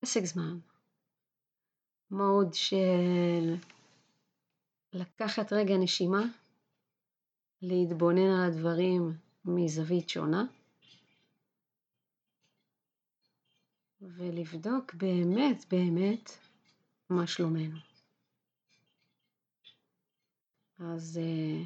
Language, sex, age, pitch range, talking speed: Hebrew, female, 30-49, 165-200 Hz, 50 wpm